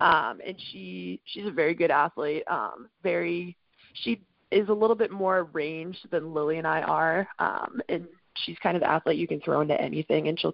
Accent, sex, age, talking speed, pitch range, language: American, female, 20-39, 205 wpm, 155-185 Hz, English